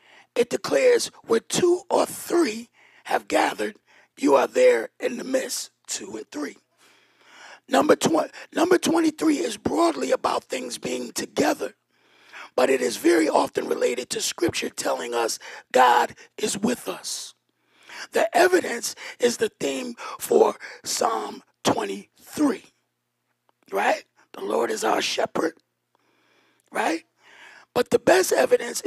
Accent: American